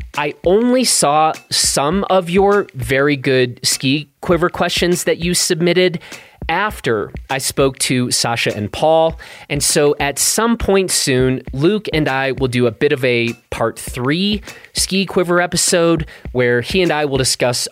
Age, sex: 30-49, male